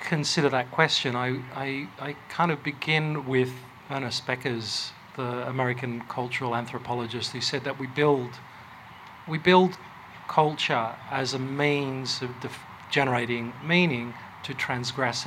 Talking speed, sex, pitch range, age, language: 130 wpm, male, 120-145 Hz, 40-59, English